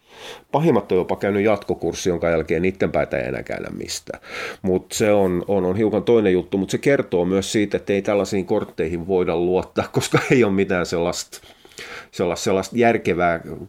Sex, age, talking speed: male, 30-49, 175 wpm